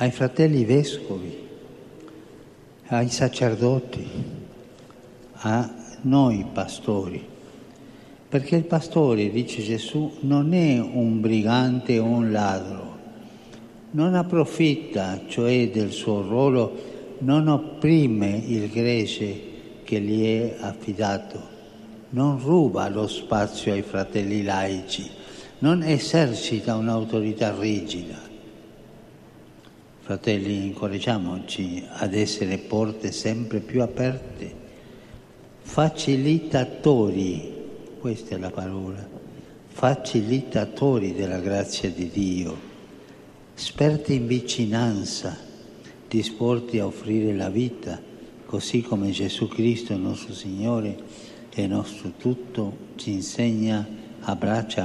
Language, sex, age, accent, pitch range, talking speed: German, male, 60-79, Italian, 105-130 Hz, 90 wpm